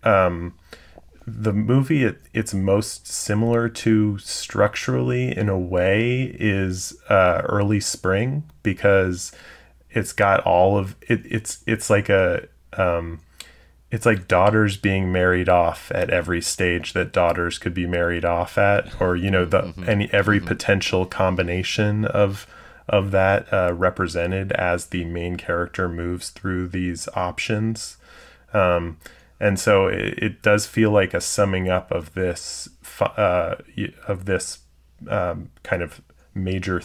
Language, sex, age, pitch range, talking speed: English, male, 30-49, 85-105 Hz, 135 wpm